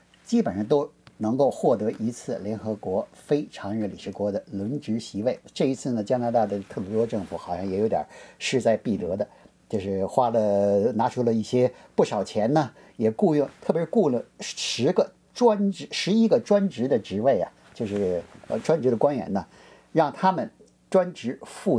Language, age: Chinese, 50-69